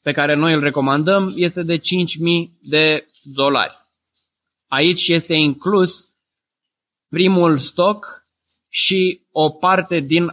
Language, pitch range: Romanian, 135-170 Hz